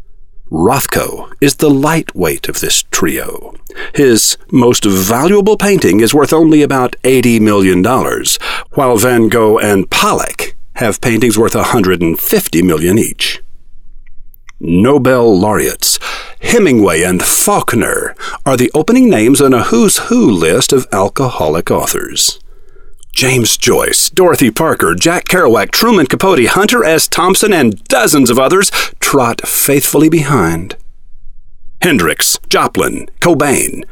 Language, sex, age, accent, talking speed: English, male, 50-69, American, 115 wpm